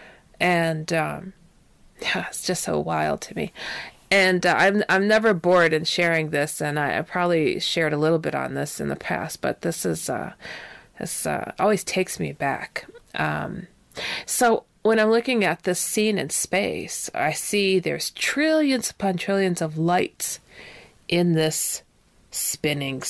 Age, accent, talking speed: 30-49, American, 160 wpm